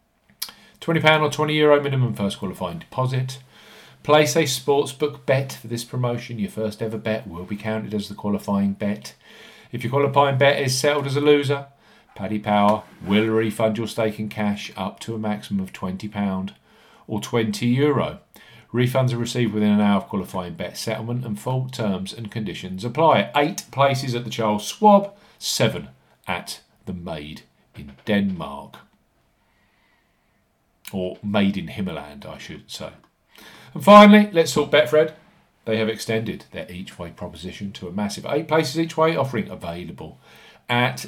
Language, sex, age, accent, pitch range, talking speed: English, male, 50-69, British, 105-145 Hz, 155 wpm